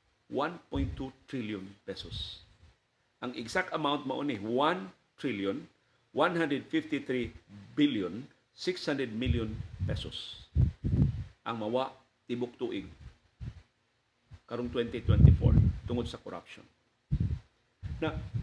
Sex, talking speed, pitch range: male, 75 wpm, 110-130 Hz